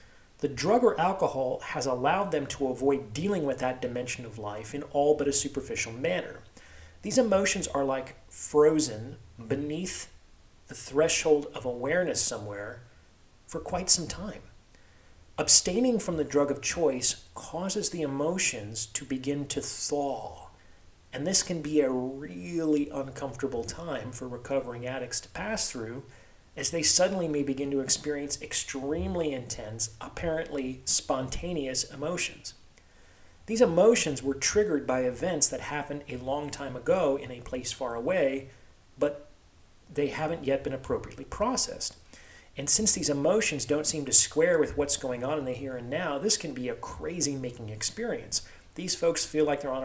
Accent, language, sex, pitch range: American, English, male, 125-150 Hz